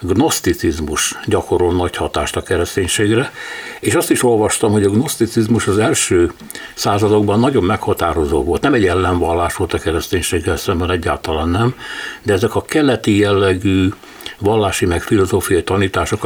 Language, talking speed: Hungarian, 135 wpm